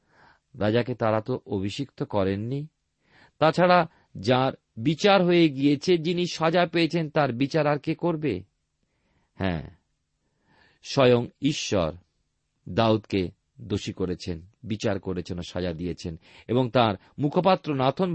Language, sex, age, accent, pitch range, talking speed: Bengali, male, 50-69, native, 95-150 Hz, 105 wpm